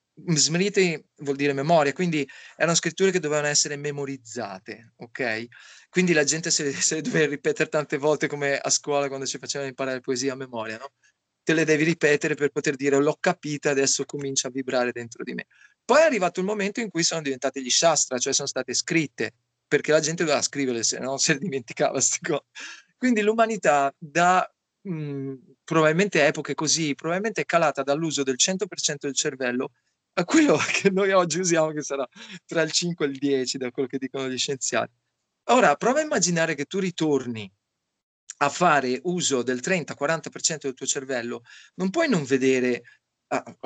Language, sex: Italian, male